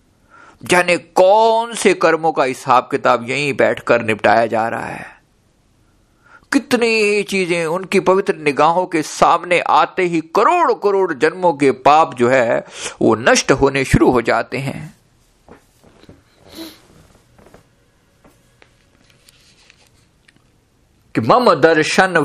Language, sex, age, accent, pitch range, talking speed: Hindi, male, 50-69, native, 135-200 Hz, 105 wpm